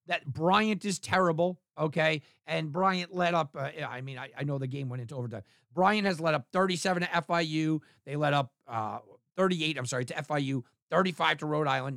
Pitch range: 145-195 Hz